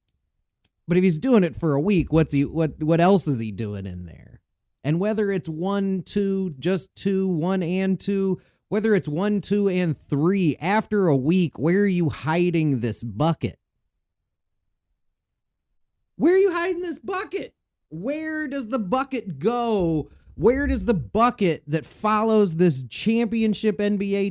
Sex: male